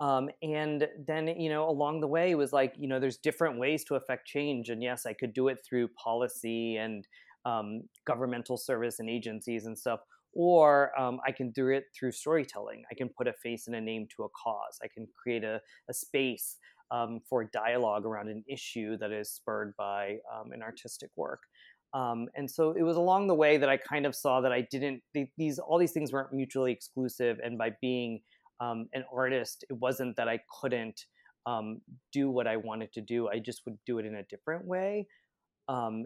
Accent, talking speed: American, 210 wpm